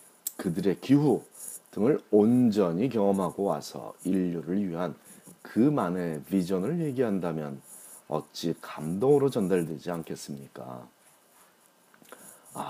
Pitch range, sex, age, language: 90-135 Hz, male, 40-59, Korean